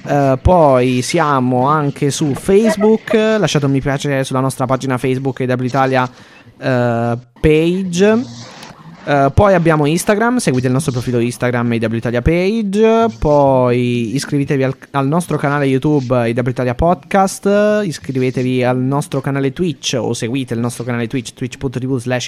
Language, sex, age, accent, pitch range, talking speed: Italian, male, 20-39, native, 125-150 Hz, 135 wpm